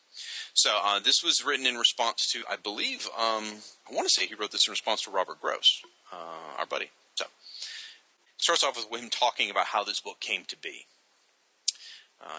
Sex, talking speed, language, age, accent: male, 200 wpm, English, 30-49, American